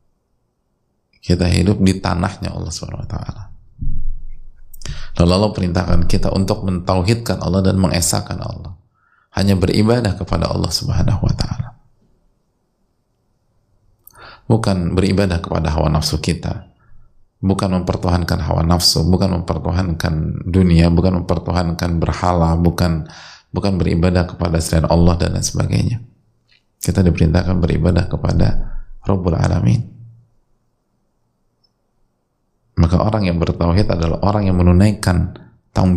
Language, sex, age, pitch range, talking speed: Indonesian, male, 30-49, 85-100 Hz, 110 wpm